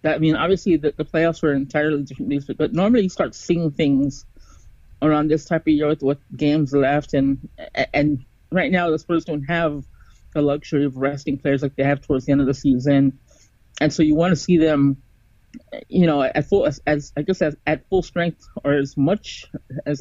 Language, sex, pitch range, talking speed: English, male, 135-160 Hz, 215 wpm